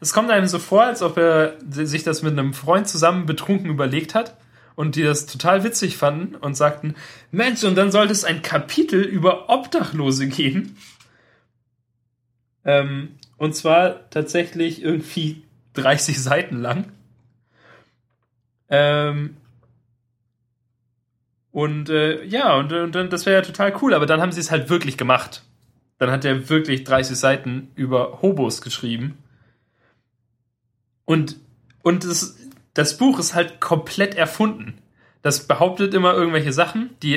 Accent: German